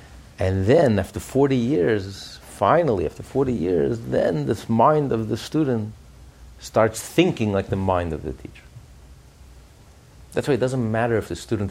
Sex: male